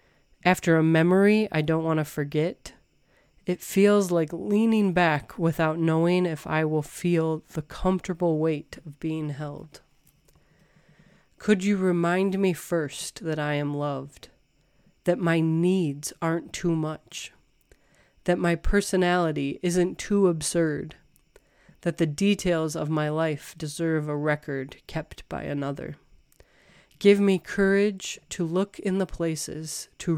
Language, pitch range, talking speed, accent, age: English, 150-180 Hz, 135 wpm, American, 30-49